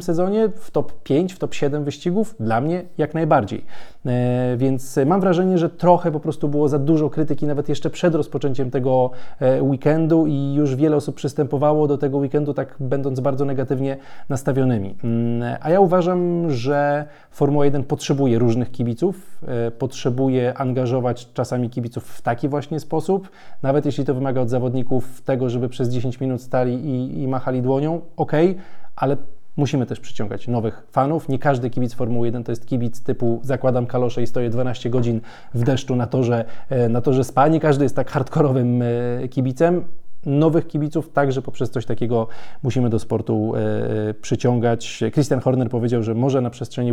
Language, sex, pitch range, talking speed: Polish, male, 125-150 Hz, 160 wpm